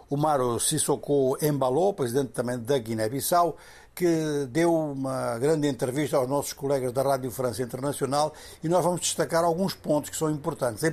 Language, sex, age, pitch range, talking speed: Portuguese, male, 60-79, 130-165 Hz, 165 wpm